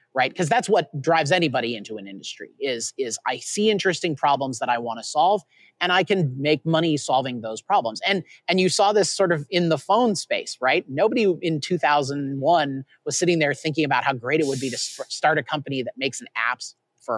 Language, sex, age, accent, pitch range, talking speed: English, male, 30-49, American, 135-190 Hz, 215 wpm